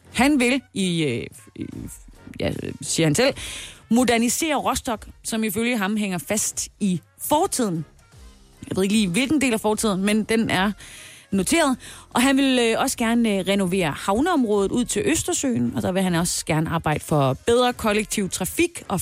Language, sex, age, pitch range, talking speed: Danish, female, 30-49, 185-250 Hz, 160 wpm